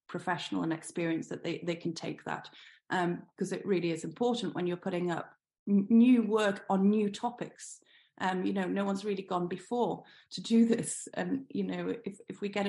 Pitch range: 175-200 Hz